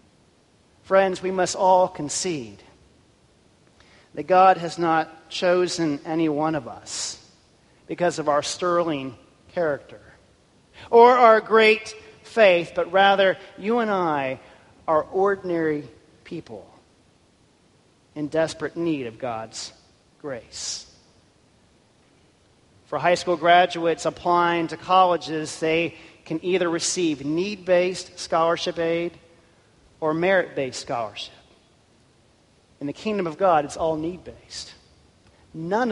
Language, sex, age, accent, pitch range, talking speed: English, male, 40-59, American, 135-180 Hz, 105 wpm